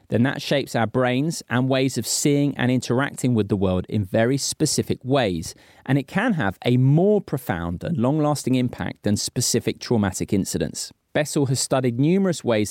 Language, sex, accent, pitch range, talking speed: English, male, British, 105-140 Hz, 175 wpm